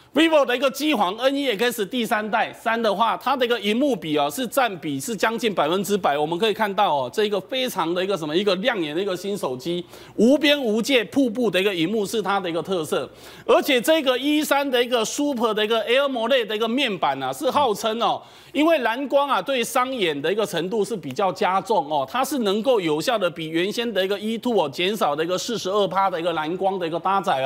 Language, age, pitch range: Chinese, 30-49, 195-250 Hz